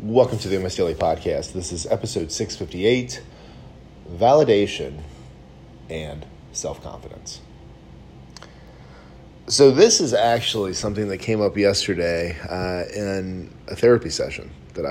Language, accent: English, American